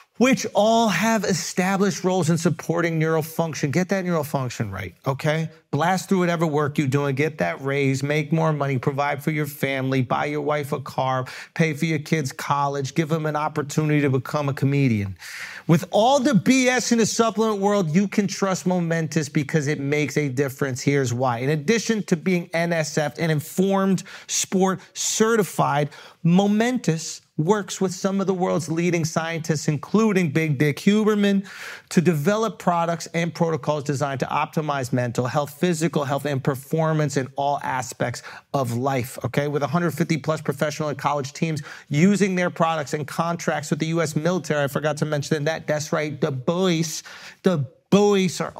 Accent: American